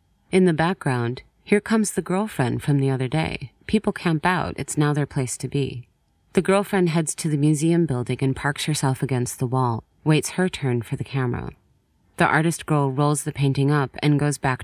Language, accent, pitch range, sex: English, American, 135-170 Hz, female